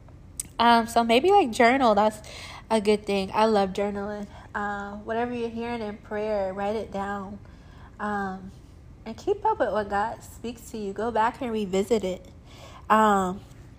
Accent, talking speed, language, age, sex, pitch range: American, 160 wpm, English, 20-39, female, 190-220 Hz